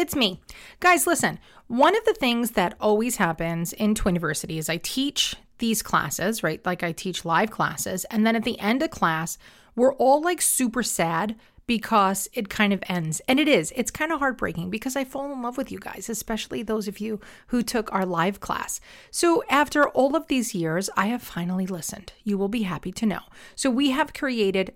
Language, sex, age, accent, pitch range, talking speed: English, female, 40-59, American, 190-260 Hz, 205 wpm